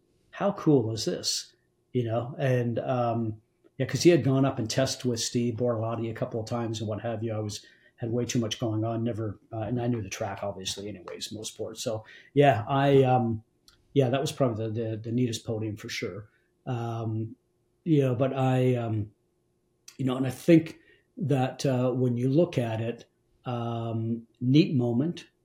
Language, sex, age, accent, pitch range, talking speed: English, male, 40-59, American, 110-130 Hz, 195 wpm